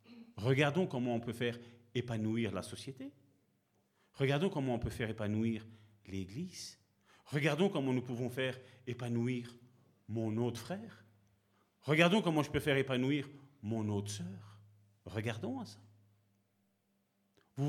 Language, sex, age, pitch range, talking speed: French, male, 40-59, 100-130 Hz, 125 wpm